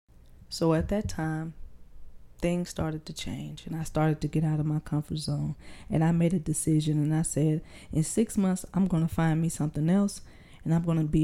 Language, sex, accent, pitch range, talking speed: English, female, American, 150-190 Hz, 220 wpm